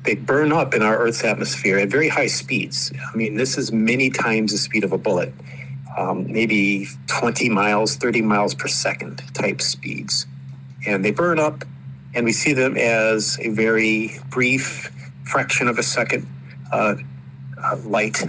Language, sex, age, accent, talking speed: English, male, 50-69, American, 165 wpm